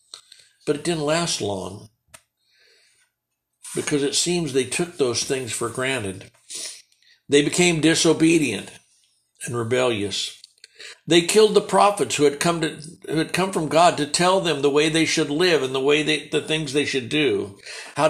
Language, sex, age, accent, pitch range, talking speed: English, male, 60-79, American, 130-175 Hz, 165 wpm